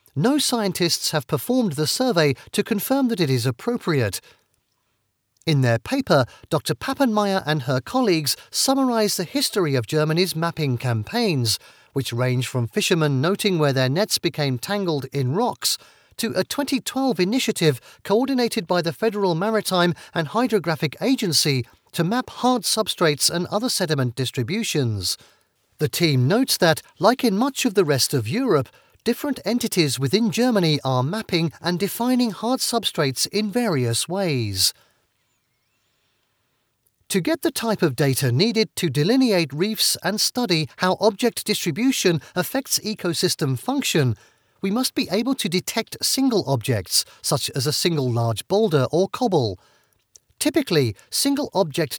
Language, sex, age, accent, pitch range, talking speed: English, male, 40-59, British, 135-225 Hz, 140 wpm